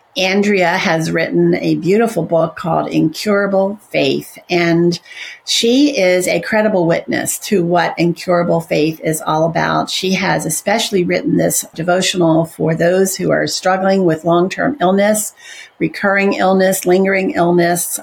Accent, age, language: American, 50-69, English